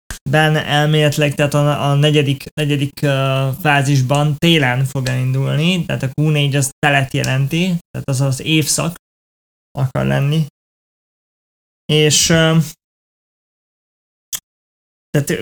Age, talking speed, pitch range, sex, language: 20-39, 105 wpm, 135-170 Hz, male, Hungarian